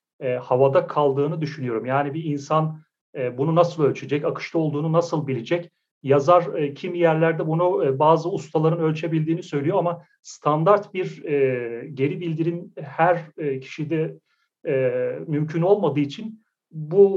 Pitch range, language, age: 140-170 Hz, Turkish, 40-59